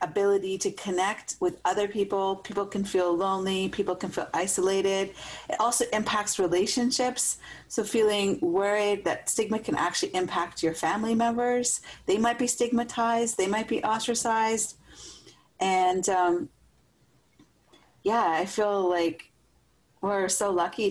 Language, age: English, 40-59